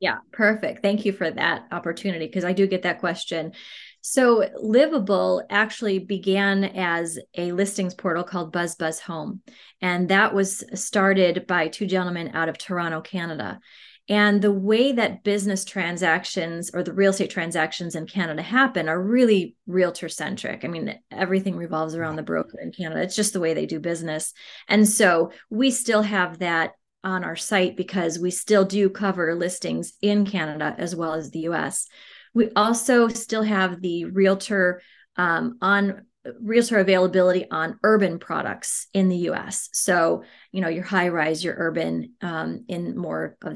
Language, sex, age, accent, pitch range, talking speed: English, female, 30-49, American, 170-210 Hz, 165 wpm